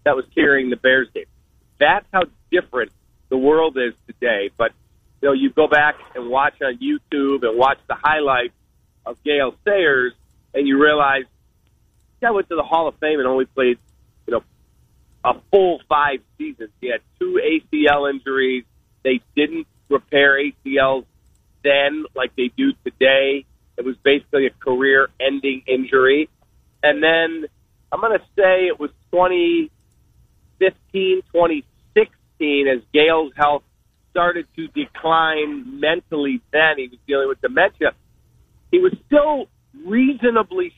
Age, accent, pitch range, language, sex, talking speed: 40-59, American, 135-170 Hz, English, male, 145 wpm